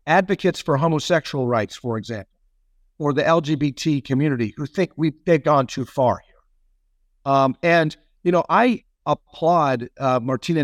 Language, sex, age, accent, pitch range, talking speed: English, male, 50-69, American, 125-160 Hz, 140 wpm